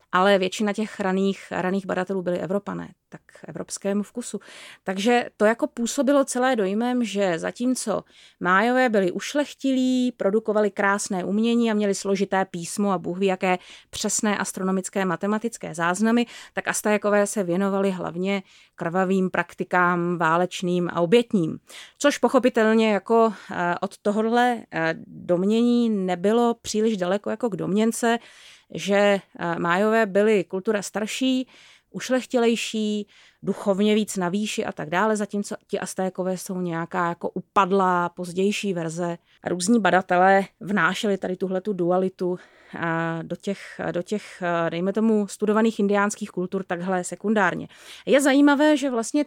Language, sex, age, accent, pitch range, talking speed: Czech, female, 30-49, native, 185-230 Hz, 120 wpm